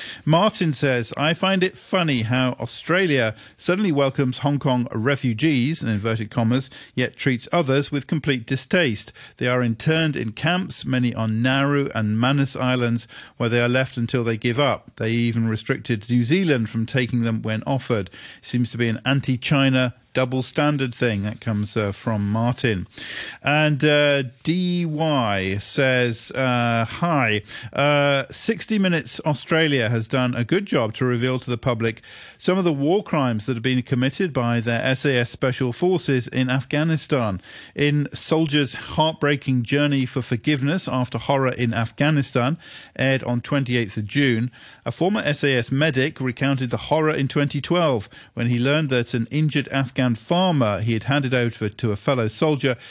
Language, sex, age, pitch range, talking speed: English, male, 50-69, 120-145 Hz, 160 wpm